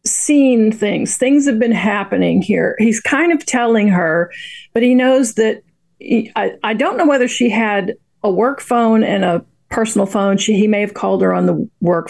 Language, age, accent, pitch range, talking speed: English, 40-59, American, 200-250 Hz, 195 wpm